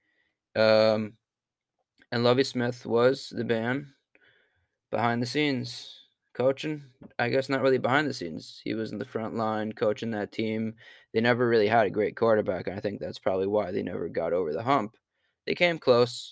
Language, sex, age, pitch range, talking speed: English, male, 20-39, 105-130 Hz, 180 wpm